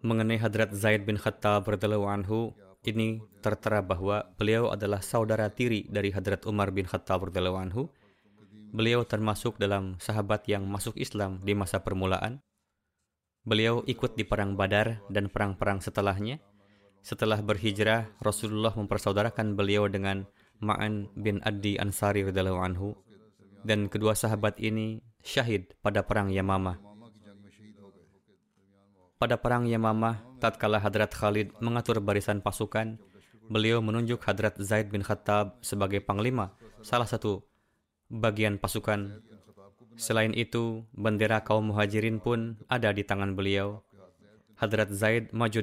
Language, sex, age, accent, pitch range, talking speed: Indonesian, male, 20-39, native, 100-110 Hz, 120 wpm